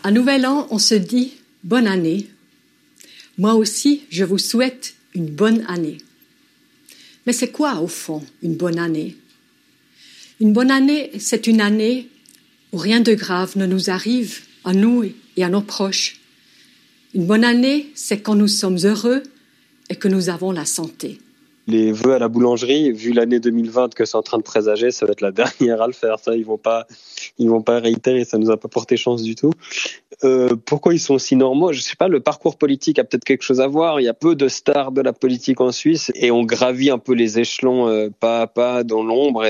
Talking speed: 215 wpm